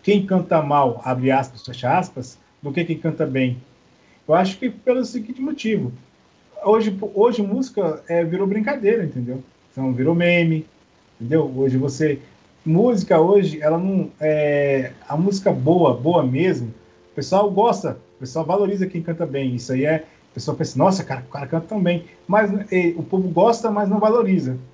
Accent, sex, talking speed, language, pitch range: Brazilian, male, 170 wpm, Portuguese, 135-195 Hz